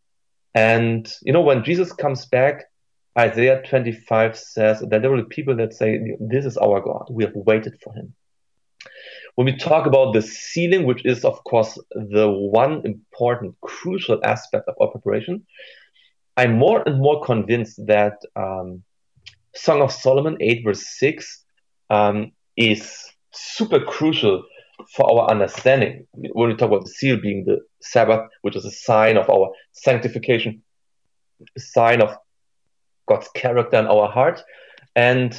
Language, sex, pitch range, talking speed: English, male, 110-135 Hz, 150 wpm